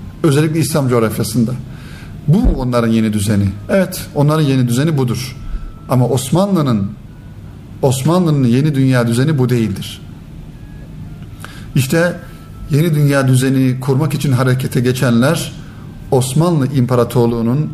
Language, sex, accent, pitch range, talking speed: Turkish, male, native, 115-145 Hz, 105 wpm